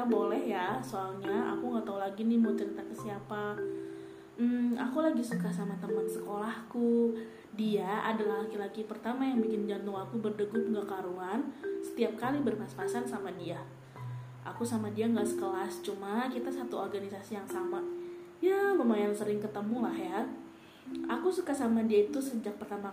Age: 20-39